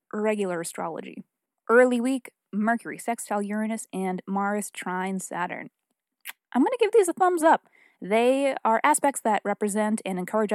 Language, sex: English, female